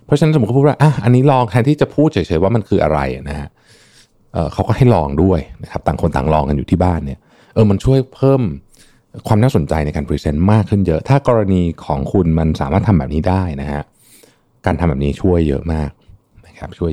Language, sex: Thai, male